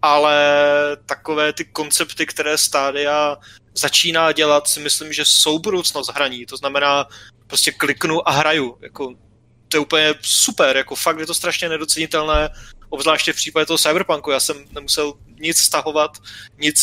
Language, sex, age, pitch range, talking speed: Czech, male, 20-39, 135-155 Hz, 150 wpm